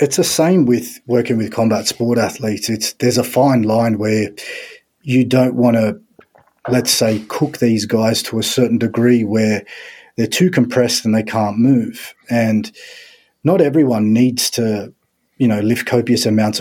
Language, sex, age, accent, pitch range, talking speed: English, male, 30-49, Australian, 110-130 Hz, 165 wpm